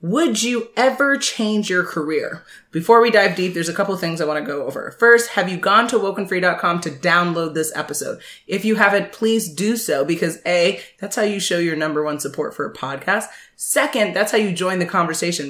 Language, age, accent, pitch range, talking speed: English, 20-39, American, 155-200 Hz, 215 wpm